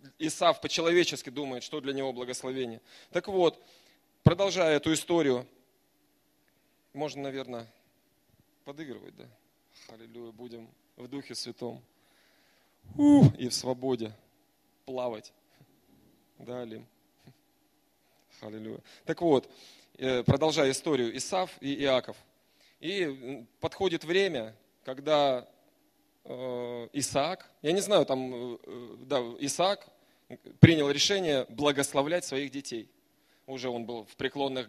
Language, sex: Russian, male